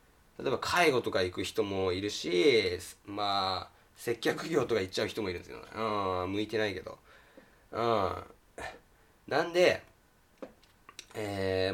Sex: male